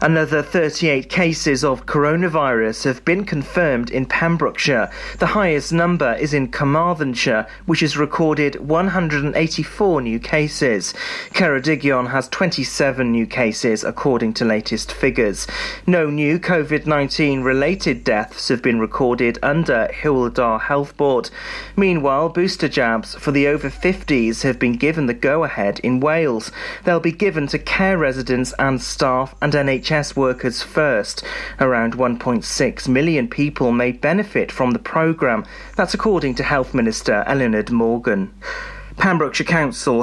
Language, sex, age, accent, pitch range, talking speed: English, male, 40-59, British, 125-165 Hz, 130 wpm